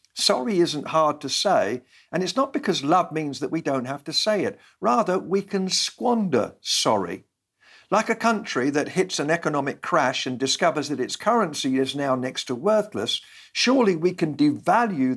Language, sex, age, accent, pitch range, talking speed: English, male, 50-69, British, 130-205 Hz, 180 wpm